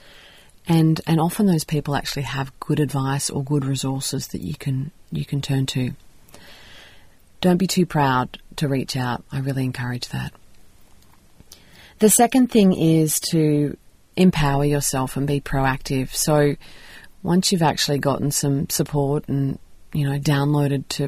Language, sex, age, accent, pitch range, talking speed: English, female, 30-49, Australian, 135-160 Hz, 150 wpm